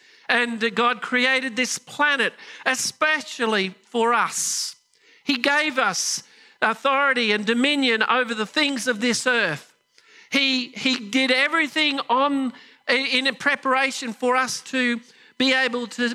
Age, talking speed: 50-69, 125 wpm